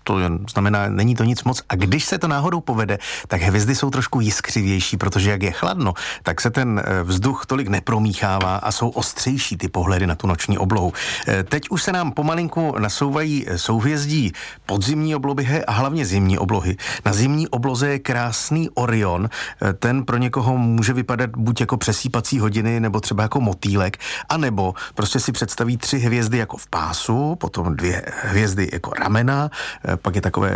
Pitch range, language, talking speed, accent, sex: 95-125 Hz, Czech, 165 wpm, native, male